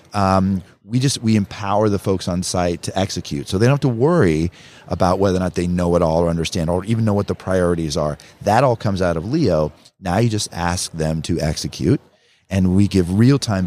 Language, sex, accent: English, male, American